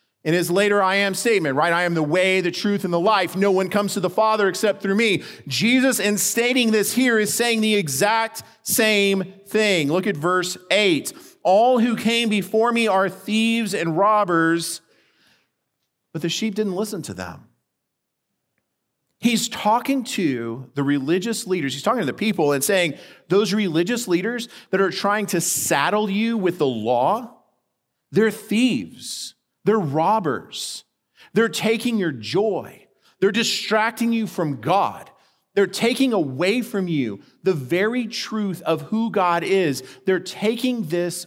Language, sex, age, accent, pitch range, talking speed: English, male, 40-59, American, 150-215 Hz, 160 wpm